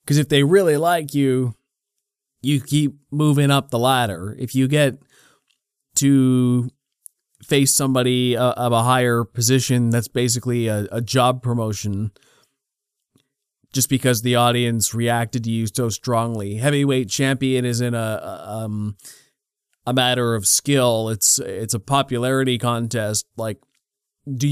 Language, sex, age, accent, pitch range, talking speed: English, male, 30-49, American, 115-140 Hz, 130 wpm